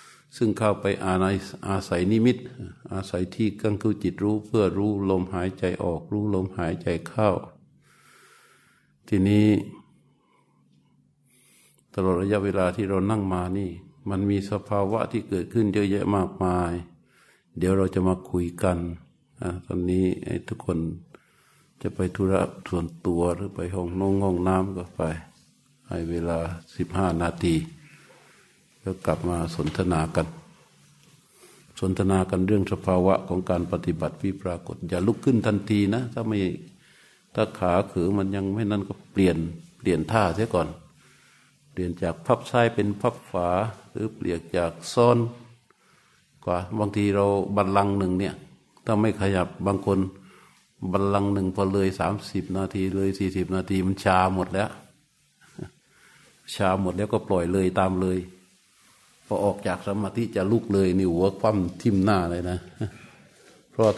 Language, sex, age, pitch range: Thai, male, 60-79, 90-105 Hz